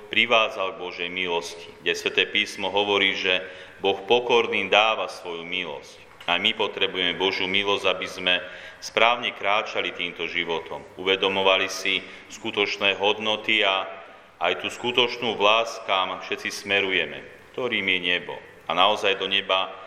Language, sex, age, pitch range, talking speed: Slovak, male, 40-59, 90-105 Hz, 135 wpm